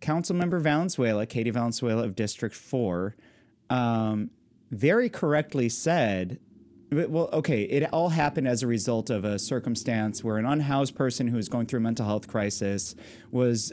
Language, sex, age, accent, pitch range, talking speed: English, male, 30-49, American, 110-140 Hz, 155 wpm